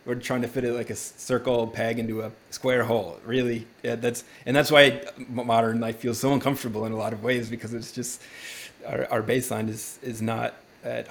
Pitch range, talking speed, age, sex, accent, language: 115-130 Hz, 210 wpm, 20-39, male, American, English